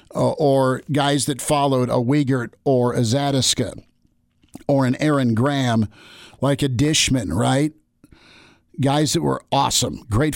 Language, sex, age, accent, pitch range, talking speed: English, male, 50-69, American, 125-150 Hz, 135 wpm